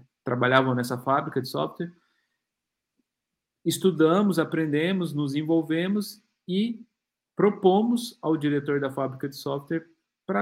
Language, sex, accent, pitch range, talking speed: Portuguese, male, Brazilian, 130-175 Hz, 105 wpm